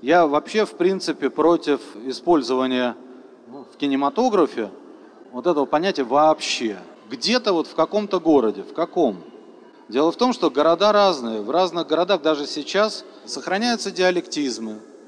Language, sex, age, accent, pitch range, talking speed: Russian, male, 30-49, native, 135-185 Hz, 125 wpm